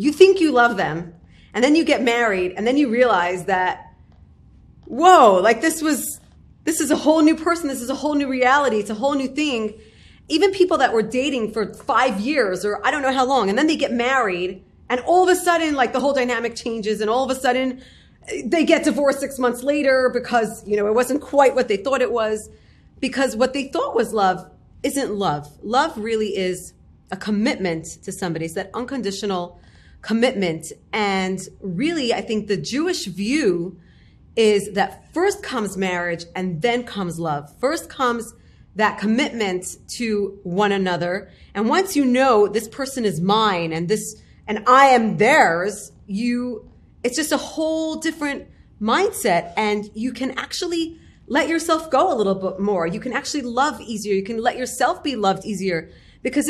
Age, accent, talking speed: 30-49, American, 185 wpm